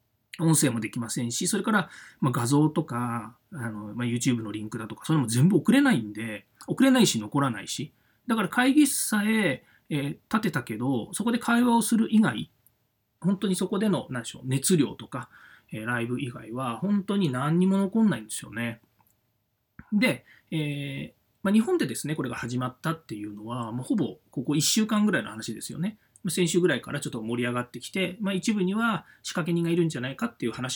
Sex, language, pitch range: male, Japanese, 120-185 Hz